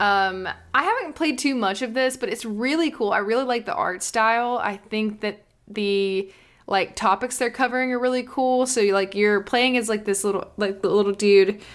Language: English